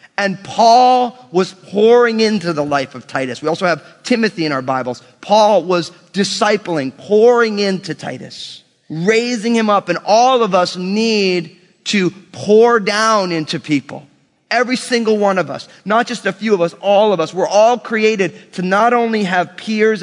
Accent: American